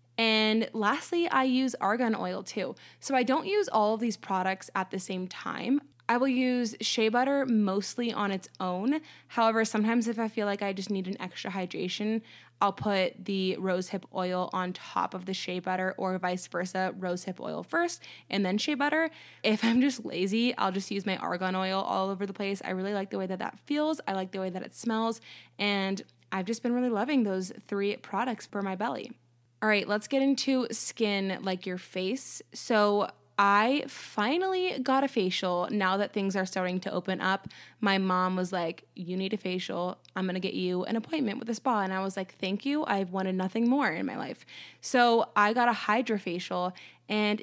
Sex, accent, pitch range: female, American, 190-235 Hz